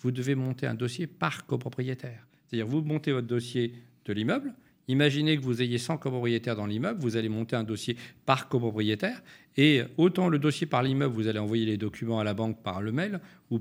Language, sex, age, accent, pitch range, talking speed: French, male, 50-69, French, 120-150 Hz, 205 wpm